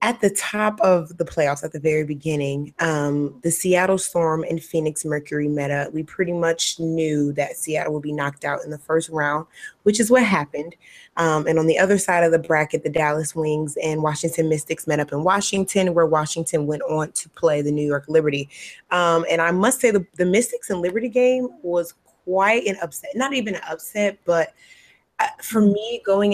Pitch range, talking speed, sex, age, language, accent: 155-190 Hz, 205 wpm, female, 20-39, English, American